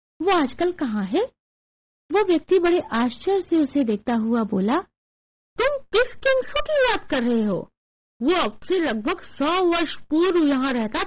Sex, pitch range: female, 225-365 Hz